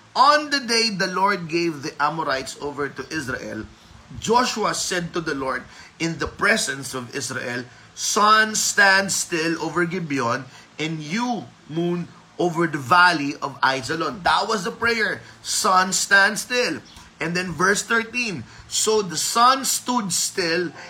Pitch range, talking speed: 150-205 Hz, 145 wpm